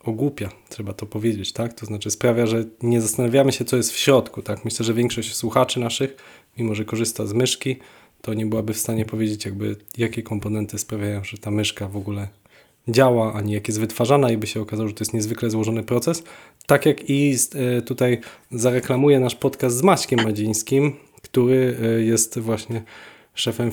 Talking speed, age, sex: 180 wpm, 20-39, male